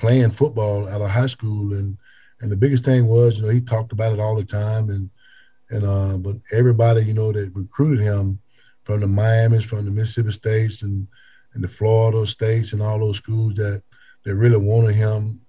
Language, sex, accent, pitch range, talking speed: English, male, American, 100-120 Hz, 200 wpm